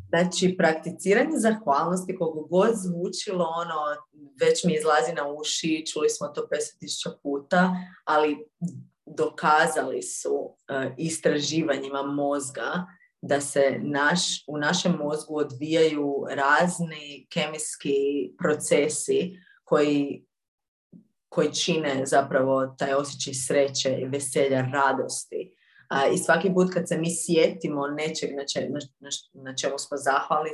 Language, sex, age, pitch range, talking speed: Croatian, female, 30-49, 140-185 Hz, 110 wpm